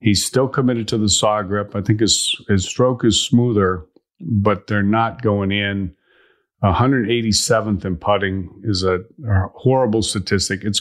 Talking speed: 155 wpm